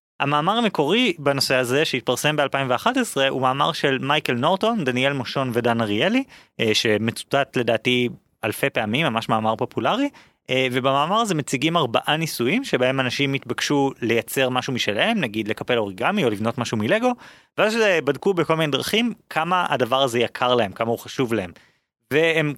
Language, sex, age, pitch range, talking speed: Hebrew, male, 30-49, 120-165 Hz, 145 wpm